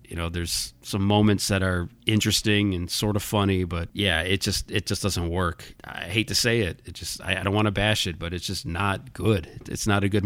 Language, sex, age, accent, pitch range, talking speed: English, male, 40-59, American, 90-110 Hz, 245 wpm